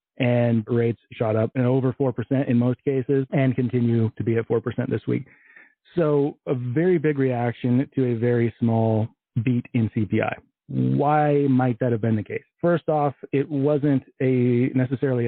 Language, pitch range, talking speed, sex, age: English, 115-135 Hz, 170 wpm, male, 30-49